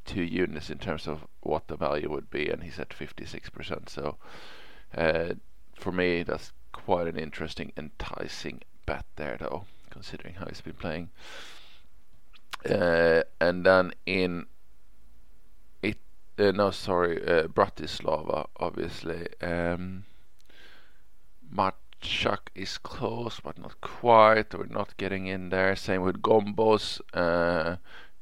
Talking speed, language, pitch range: 125 wpm, English, 90-105 Hz